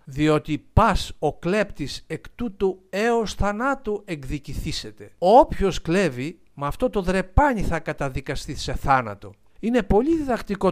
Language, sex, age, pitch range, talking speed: Greek, male, 60-79, 145-200 Hz, 125 wpm